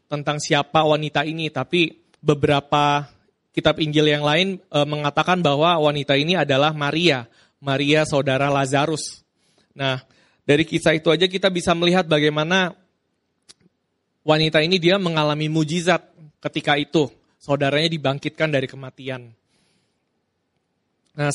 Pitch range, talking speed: 150-175 Hz, 115 wpm